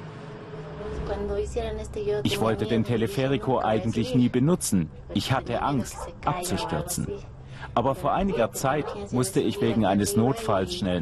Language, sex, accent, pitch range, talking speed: German, male, German, 100-130 Hz, 115 wpm